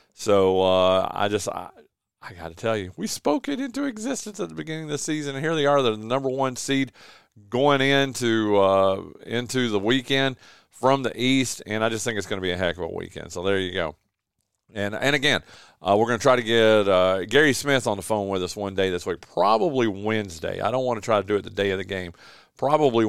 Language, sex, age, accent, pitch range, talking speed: English, male, 40-59, American, 100-145 Hz, 230 wpm